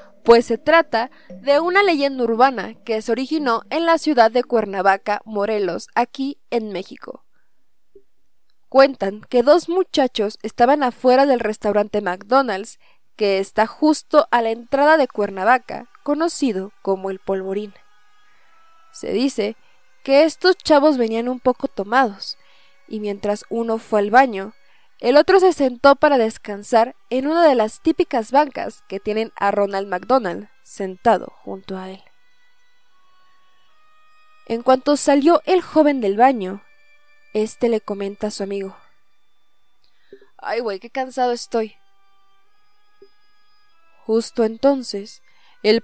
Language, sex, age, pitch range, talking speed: Spanish, female, 20-39, 210-295 Hz, 125 wpm